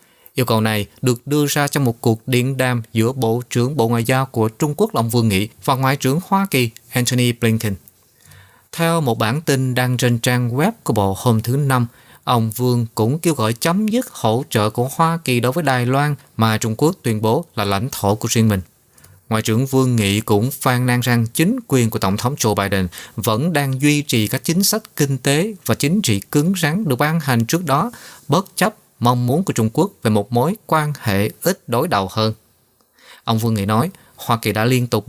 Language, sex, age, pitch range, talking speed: Vietnamese, male, 20-39, 110-145 Hz, 220 wpm